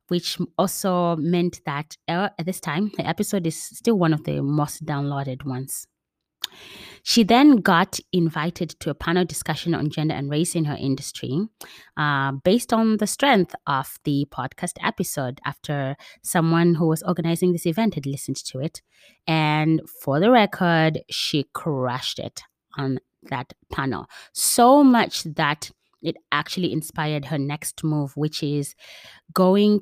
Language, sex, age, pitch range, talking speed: English, female, 20-39, 145-185 Hz, 150 wpm